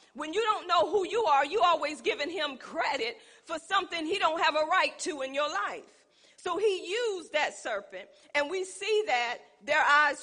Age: 40-59